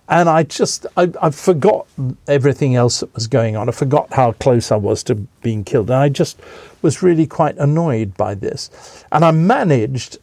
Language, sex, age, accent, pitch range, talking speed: English, male, 50-69, British, 115-150 Hz, 195 wpm